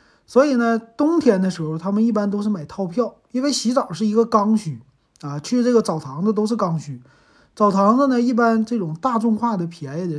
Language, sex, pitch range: Chinese, male, 165-235 Hz